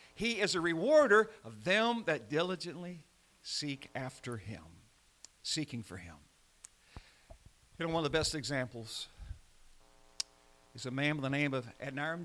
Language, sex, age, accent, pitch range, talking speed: English, male, 50-69, American, 115-165 Hz, 140 wpm